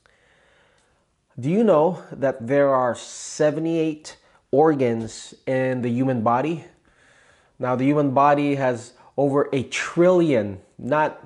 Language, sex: English, male